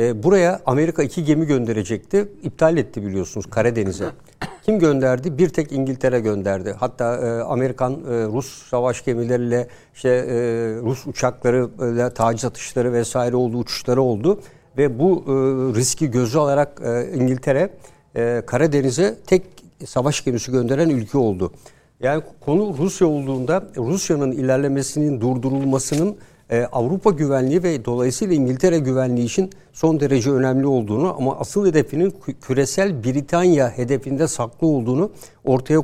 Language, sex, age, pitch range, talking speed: Turkish, male, 60-79, 125-160 Hz, 115 wpm